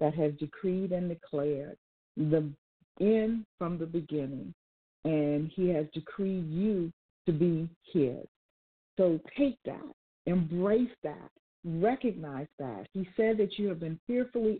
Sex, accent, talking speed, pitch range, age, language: female, American, 130 wpm, 155-200 Hz, 50-69, English